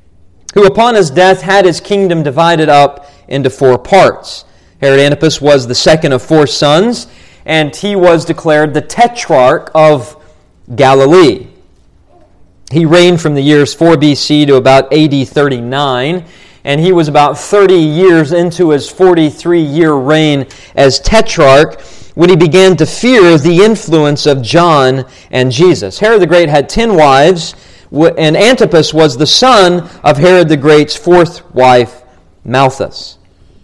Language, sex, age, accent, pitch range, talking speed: English, male, 40-59, American, 130-170 Hz, 145 wpm